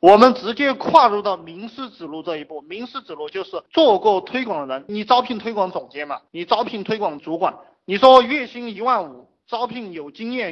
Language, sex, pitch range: Chinese, male, 160-240 Hz